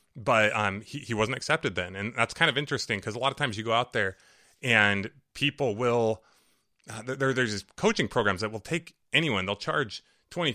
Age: 30-49